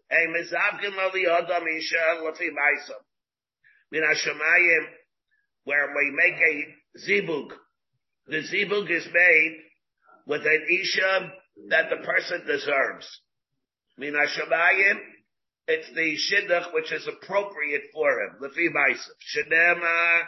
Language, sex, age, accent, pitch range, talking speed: English, male, 50-69, American, 155-190 Hz, 110 wpm